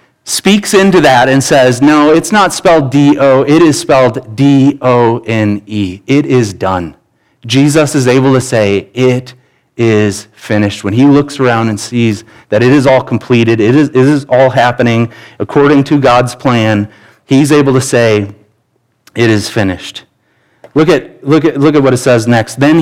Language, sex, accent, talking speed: English, male, American, 160 wpm